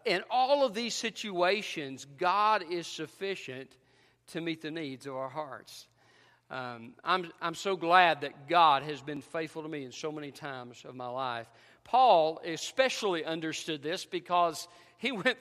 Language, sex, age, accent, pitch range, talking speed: English, male, 50-69, American, 155-220 Hz, 160 wpm